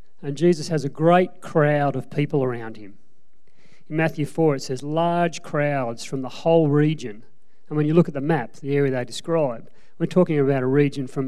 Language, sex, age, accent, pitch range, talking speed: English, male, 40-59, Australian, 135-165 Hz, 200 wpm